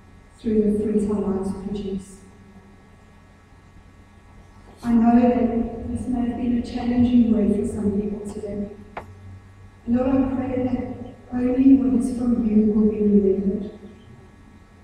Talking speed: 125 wpm